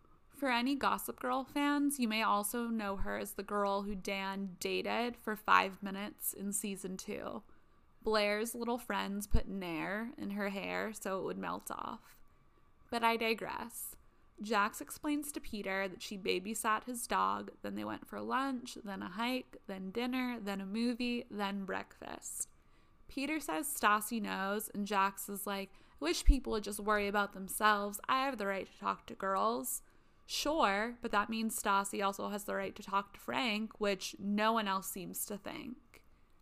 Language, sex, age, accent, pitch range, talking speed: English, female, 20-39, American, 200-240 Hz, 175 wpm